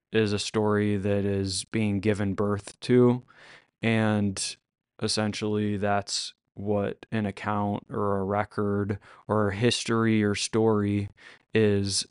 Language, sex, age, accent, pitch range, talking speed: English, male, 20-39, American, 105-115 Hz, 120 wpm